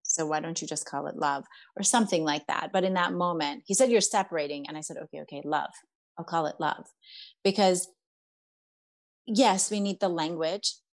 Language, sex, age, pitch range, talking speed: English, female, 30-49, 160-240 Hz, 195 wpm